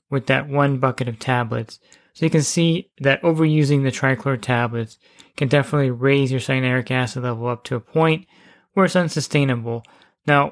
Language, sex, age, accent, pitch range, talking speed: English, male, 20-39, American, 130-150 Hz, 170 wpm